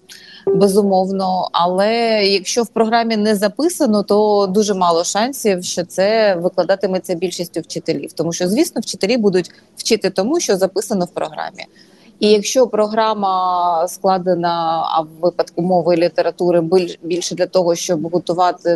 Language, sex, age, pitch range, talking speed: Ukrainian, female, 30-49, 175-210 Hz, 135 wpm